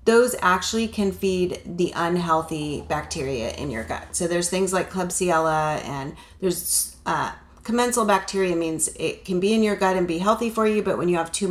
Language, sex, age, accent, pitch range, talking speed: English, female, 30-49, American, 165-200 Hz, 195 wpm